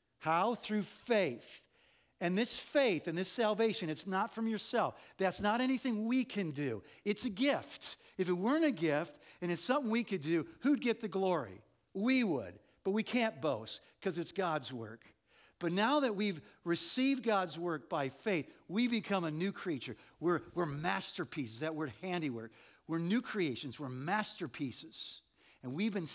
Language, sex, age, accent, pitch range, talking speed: English, male, 50-69, American, 140-200 Hz, 170 wpm